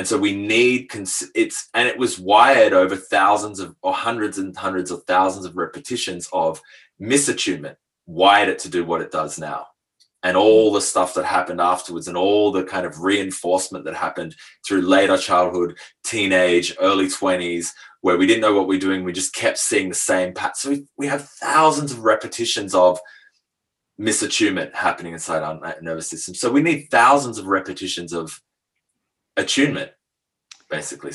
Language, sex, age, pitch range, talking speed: English, male, 20-39, 85-115 Hz, 170 wpm